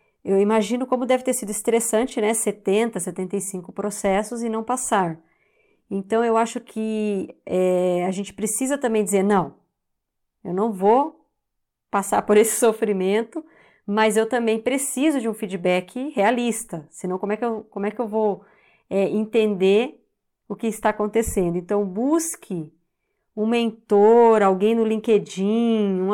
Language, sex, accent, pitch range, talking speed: Portuguese, female, Brazilian, 195-235 Hz, 135 wpm